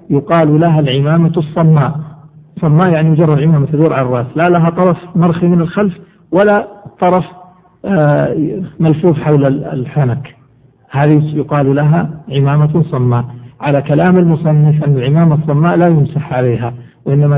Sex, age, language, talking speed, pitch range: male, 50-69, Arabic, 130 wpm, 140-165 Hz